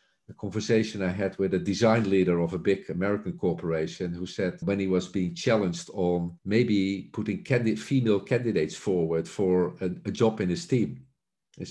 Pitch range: 90-115 Hz